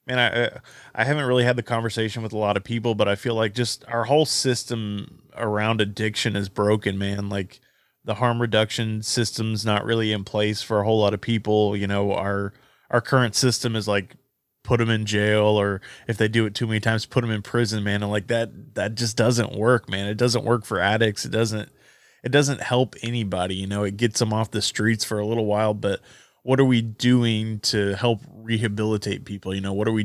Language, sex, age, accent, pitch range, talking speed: English, male, 20-39, American, 105-115 Hz, 220 wpm